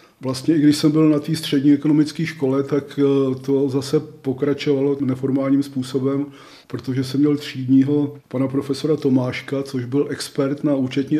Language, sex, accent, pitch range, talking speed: Czech, male, native, 130-140 Hz, 150 wpm